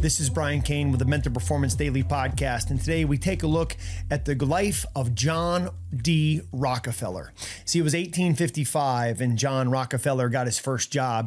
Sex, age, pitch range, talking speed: male, 30-49, 125-155 Hz, 180 wpm